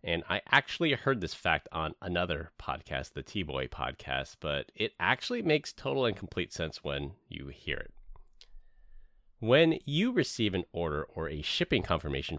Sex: male